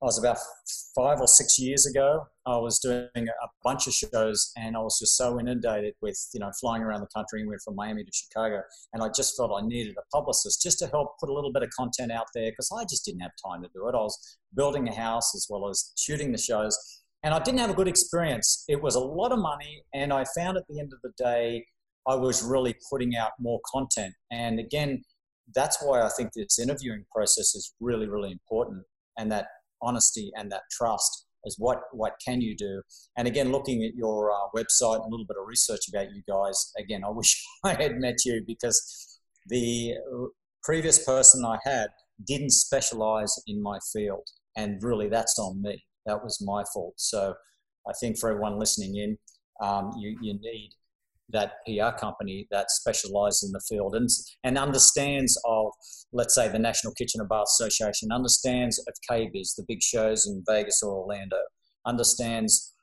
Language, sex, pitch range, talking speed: English, male, 105-130 Hz, 200 wpm